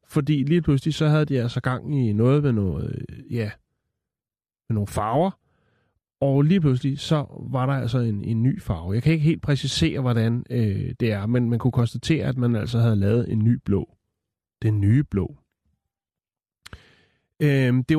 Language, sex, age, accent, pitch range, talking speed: Danish, male, 30-49, native, 110-140 Hz, 165 wpm